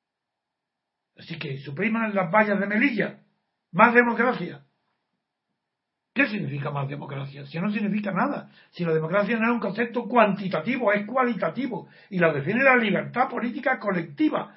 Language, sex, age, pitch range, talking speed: Spanish, male, 60-79, 165-210 Hz, 145 wpm